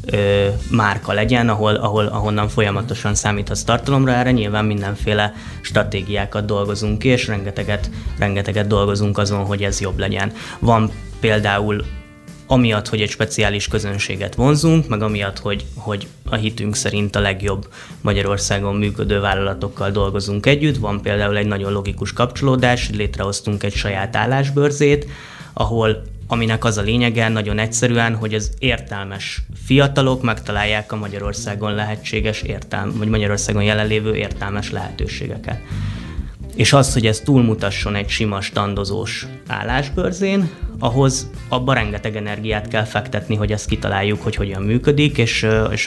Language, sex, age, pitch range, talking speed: Hungarian, male, 20-39, 100-115 Hz, 130 wpm